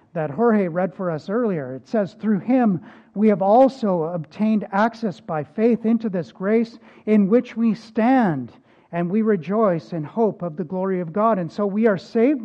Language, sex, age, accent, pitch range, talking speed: English, male, 50-69, American, 180-235 Hz, 190 wpm